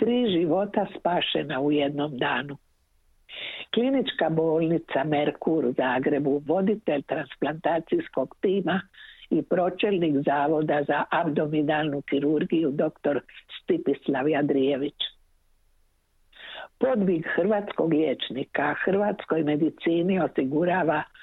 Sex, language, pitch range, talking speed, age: female, Croatian, 140-170 Hz, 80 wpm, 60-79